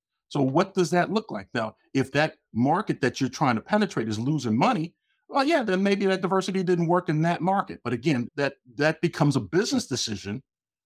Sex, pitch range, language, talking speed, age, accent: male, 115-170 Hz, English, 205 wpm, 50-69, American